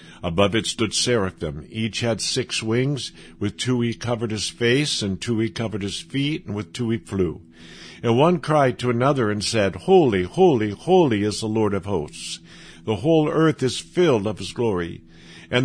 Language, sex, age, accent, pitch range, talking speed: English, male, 60-79, American, 95-125 Hz, 190 wpm